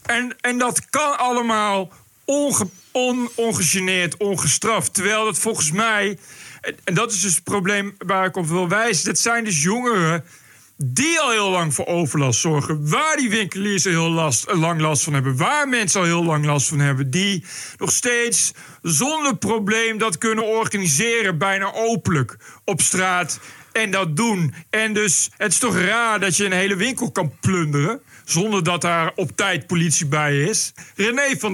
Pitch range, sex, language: 165-220 Hz, male, Dutch